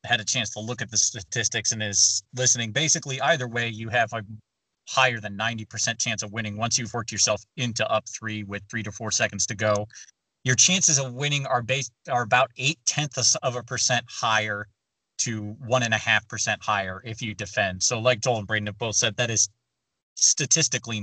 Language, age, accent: English, 30-49, American